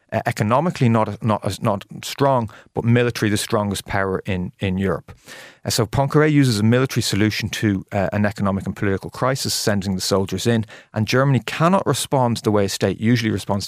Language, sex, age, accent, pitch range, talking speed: English, male, 30-49, Irish, 100-115 Hz, 180 wpm